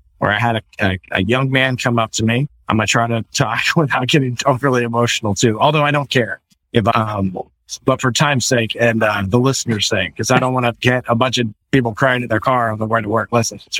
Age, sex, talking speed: 30-49, male, 260 wpm